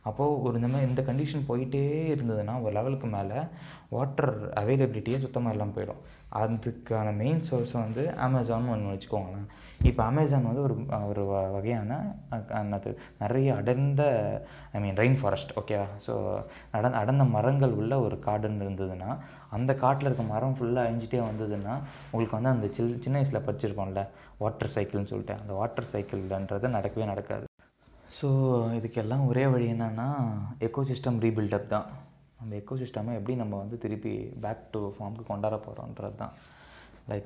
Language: Tamil